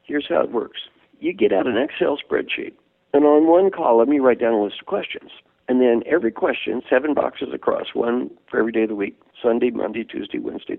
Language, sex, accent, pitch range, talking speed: English, male, American, 115-150 Hz, 215 wpm